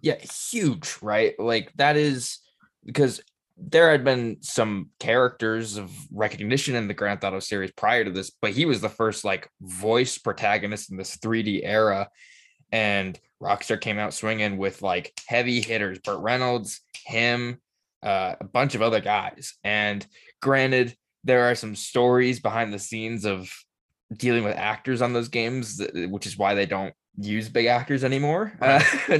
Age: 10-29